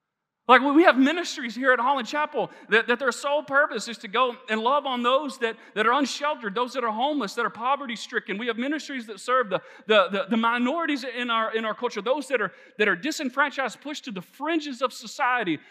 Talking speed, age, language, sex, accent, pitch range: 225 wpm, 40-59, English, male, American, 190-255 Hz